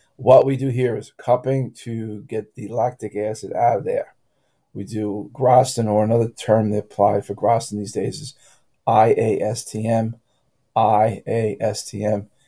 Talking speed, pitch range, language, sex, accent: 140 wpm, 100-125 Hz, English, male, American